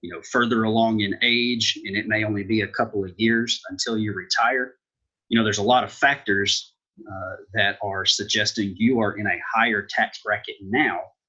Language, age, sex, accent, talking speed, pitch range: English, 30-49, male, American, 195 wpm, 100-120 Hz